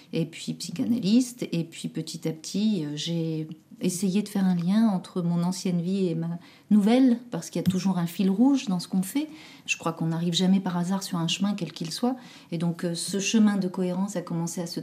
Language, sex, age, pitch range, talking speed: French, female, 40-59, 170-205 Hz, 225 wpm